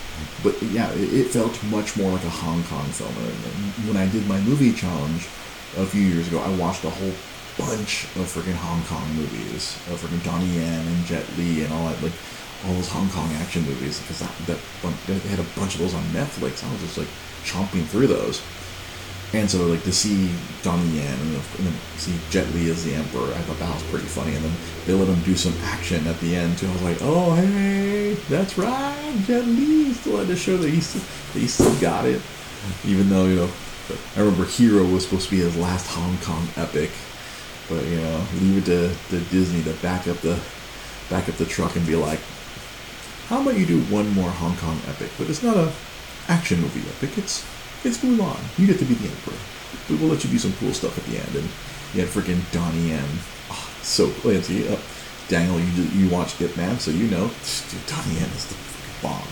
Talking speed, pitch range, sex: 225 wpm, 85-105 Hz, male